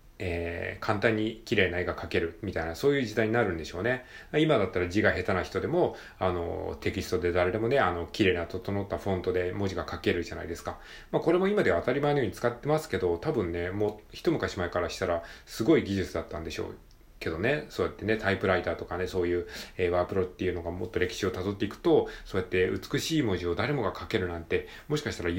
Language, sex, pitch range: Japanese, male, 90-115 Hz